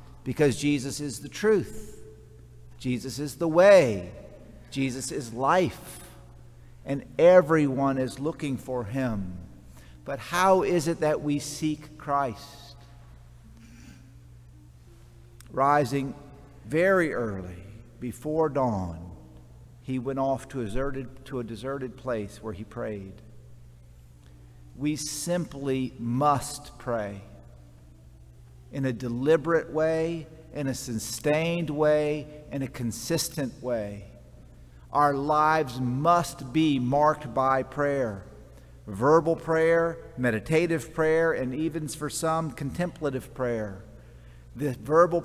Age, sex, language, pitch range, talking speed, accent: 50-69, male, English, 110-160 Hz, 100 wpm, American